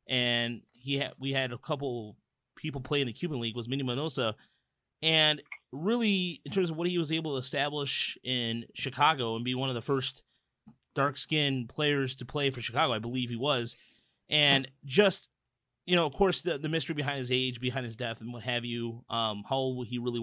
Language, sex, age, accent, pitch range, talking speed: English, male, 30-49, American, 125-155 Hz, 210 wpm